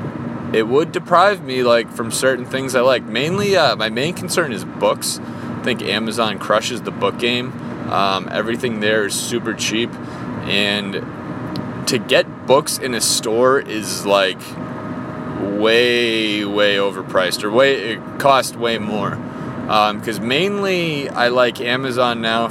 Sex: male